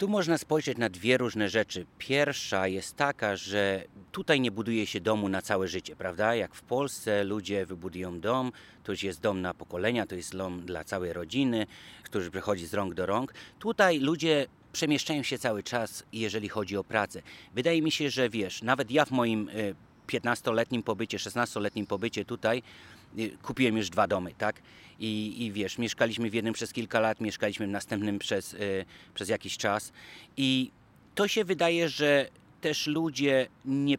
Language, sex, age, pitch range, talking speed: Polish, male, 30-49, 105-135 Hz, 170 wpm